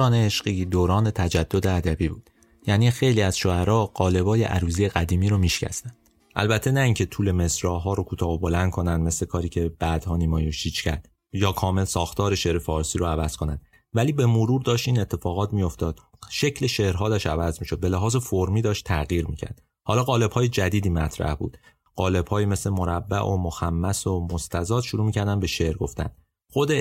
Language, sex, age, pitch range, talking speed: Persian, male, 30-49, 85-115 Hz, 170 wpm